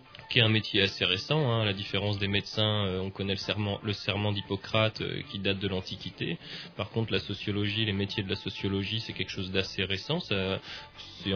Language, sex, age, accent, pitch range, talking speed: French, male, 20-39, French, 100-110 Hz, 200 wpm